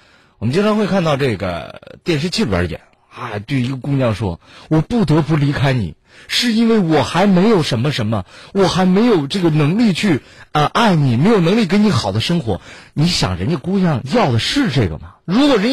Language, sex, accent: Chinese, male, native